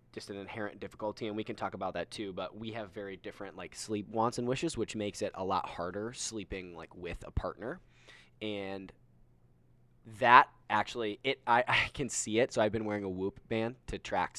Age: 10-29